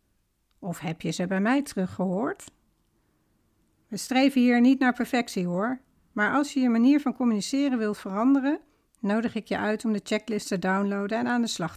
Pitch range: 200-265 Hz